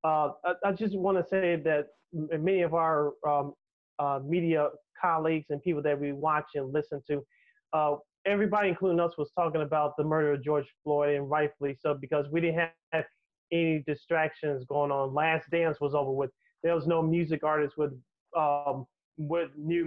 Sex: male